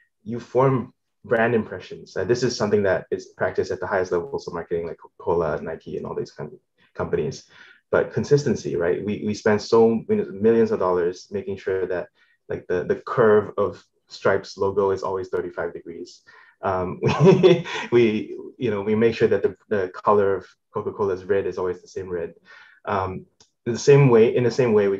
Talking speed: 200 wpm